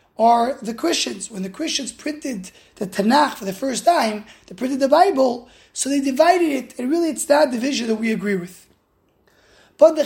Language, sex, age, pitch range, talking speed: English, male, 20-39, 210-280 Hz, 190 wpm